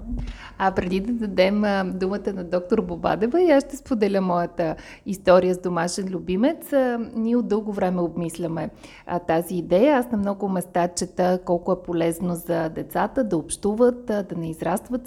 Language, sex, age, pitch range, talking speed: Bulgarian, female, 30-49, 180-245 Hz, 155 wpm